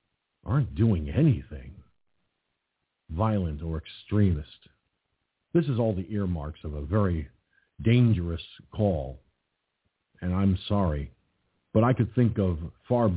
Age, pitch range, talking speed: 50-69, 90-120 Hz, 115 wpm